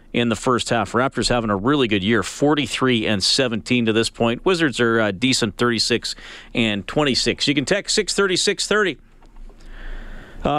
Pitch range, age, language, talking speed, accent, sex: 115-145 Hz, 40-59, English, 170 wpm, American, male